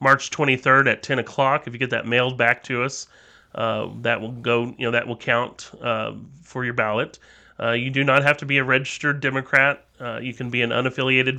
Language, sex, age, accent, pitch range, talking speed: English, male, 30-49, American, 110-135 Hz, 220 wpm